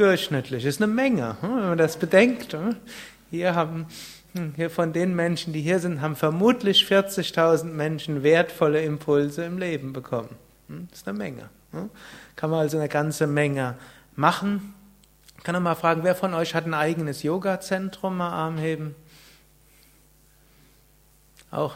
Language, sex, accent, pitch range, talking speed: German, male, German, 145-180 Hz, 140 wpm